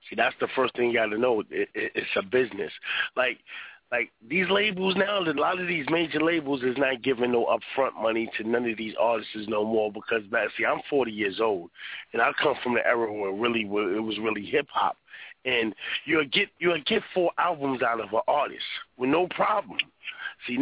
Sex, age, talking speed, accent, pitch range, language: male, 30-49, 215 wpm, American, 125-175 Hz, English